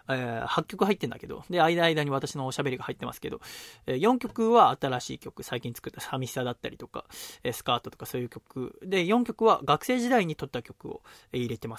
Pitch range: 125-175 Hz